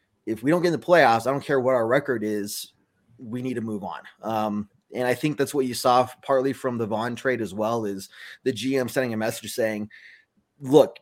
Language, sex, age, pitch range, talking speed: English, male, 20-39, 110-140 Hz, 230 wpm